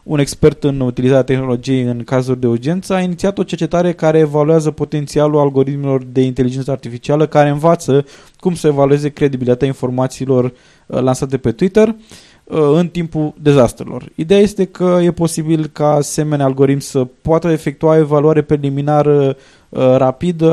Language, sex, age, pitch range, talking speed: Romanian, male, 20-39, 135-170 Hz, 135 wpm